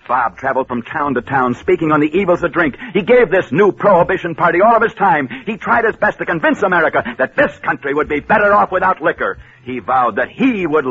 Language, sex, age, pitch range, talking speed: English, male, 60-79, 145-225 Hz, 235 wpm